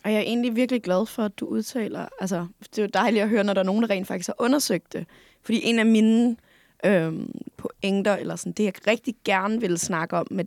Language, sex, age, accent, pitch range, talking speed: Danish, female, 20-39, native, 180-220 Hz, 245 wpm